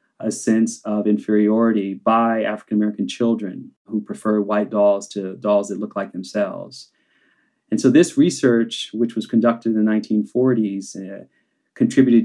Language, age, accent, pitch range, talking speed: English, 30-49, American, 105-130 Hz, 140 wpm